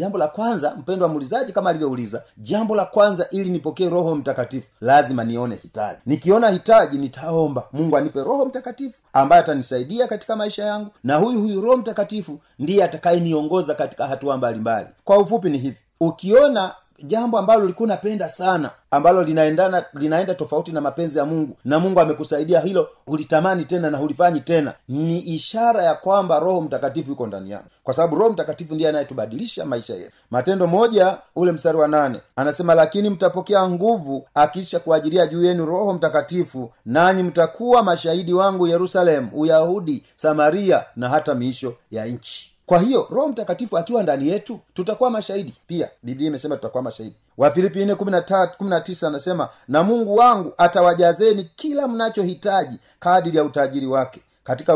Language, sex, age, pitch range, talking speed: Swahili, male, 40-59, 145-195 Hz, 155 wpm